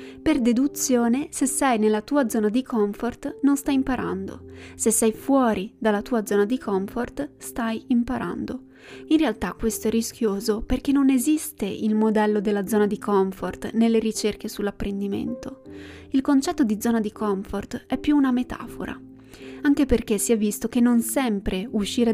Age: 20-39